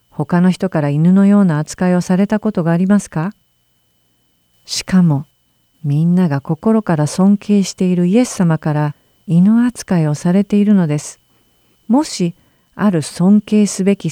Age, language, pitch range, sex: 50-69, Japanese, 135-190 Hz, female